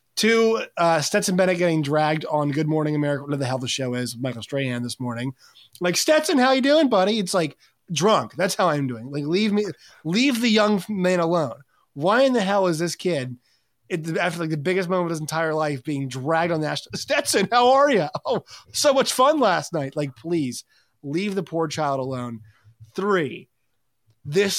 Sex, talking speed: male, 200 wpm